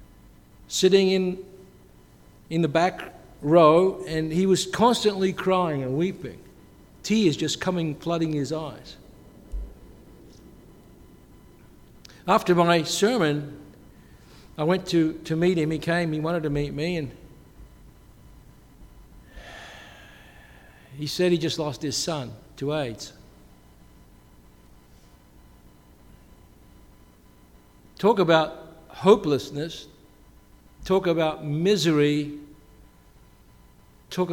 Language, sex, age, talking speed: English, male, 60-79, 90 wpm